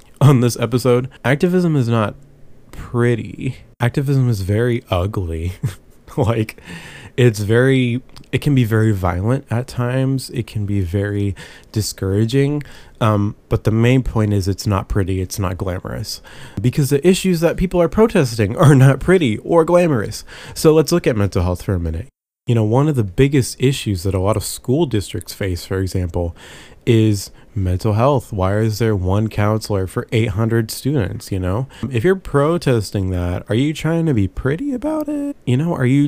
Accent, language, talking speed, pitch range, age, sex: American, English, 175 wpm, 100-140 Hz, 20-39, male